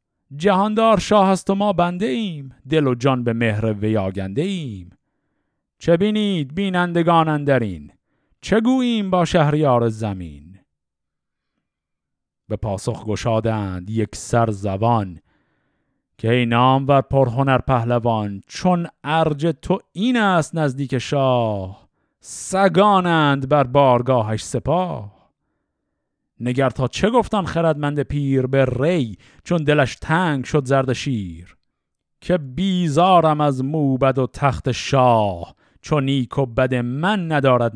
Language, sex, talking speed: Persian, male, 110 wpm